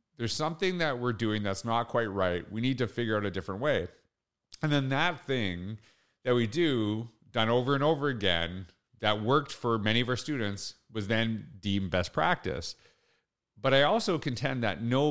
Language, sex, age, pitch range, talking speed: English, male, 40-59, 105-140 Hz, 185 wpm